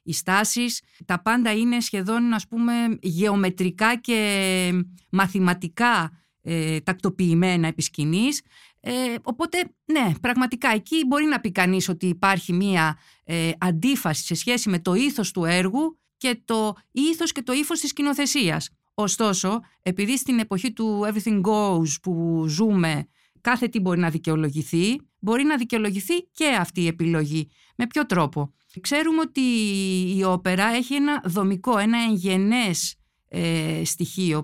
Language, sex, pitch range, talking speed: Greek, female, 180-245 Hz, 135 wpm